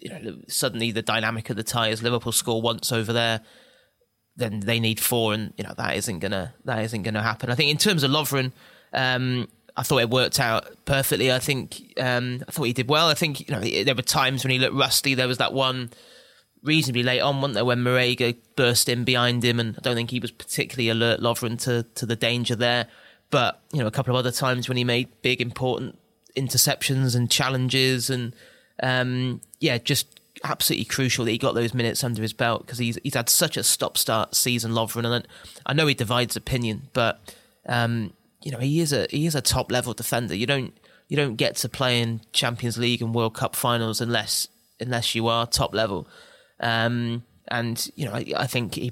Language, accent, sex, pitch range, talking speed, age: English, British, male, 115-130 Hz, 215 wpm, 20-39